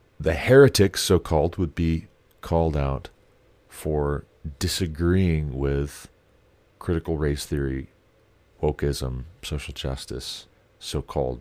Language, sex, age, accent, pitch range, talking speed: English, male, 40-59, American, 75-100 Hz, 90 wpm